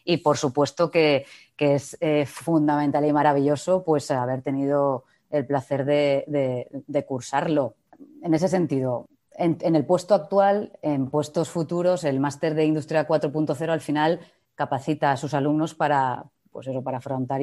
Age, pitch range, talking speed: 30-49, 135-155 Hz, 160 wpm